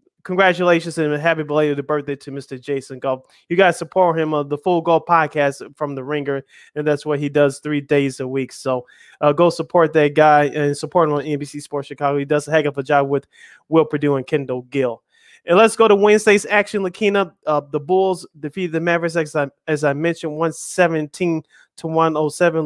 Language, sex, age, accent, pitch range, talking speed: English, male, 20-39, American, 150-190 Hz, 215 wpm